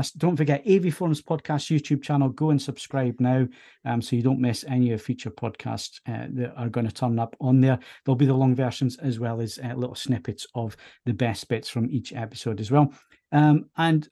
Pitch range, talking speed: 120-140 Hz, 215 wpm